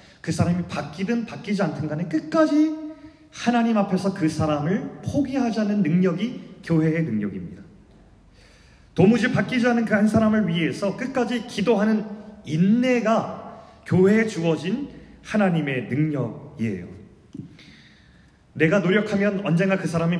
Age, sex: 30-49, male